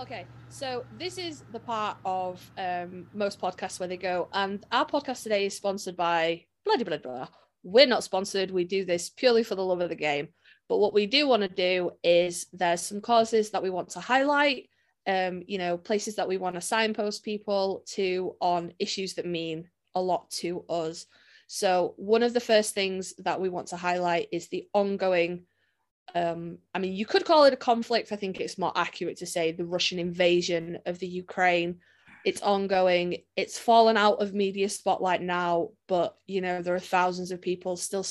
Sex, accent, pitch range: female, British, 175-210 Hz